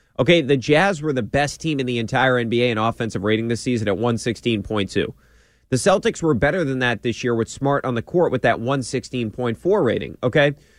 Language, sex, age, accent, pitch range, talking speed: English, male, 30-49, American, 120-155 Hz, 200 wpm